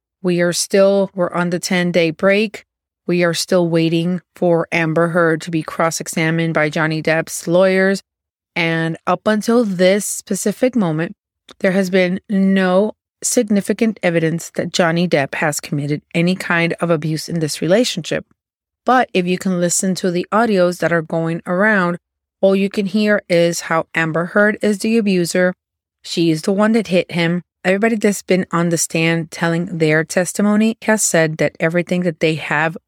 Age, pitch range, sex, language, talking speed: 30-49, 165-190 Hz, female, English, 170 wpm